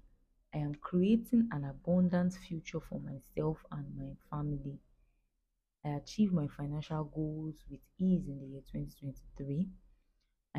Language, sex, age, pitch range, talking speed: English, female, 20-39, 135-165 Hz, 125 wpm